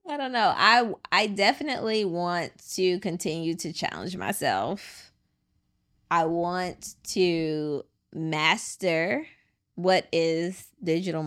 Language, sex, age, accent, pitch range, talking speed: English, female, 20-39, American, 155-185 Hz, 100 wpm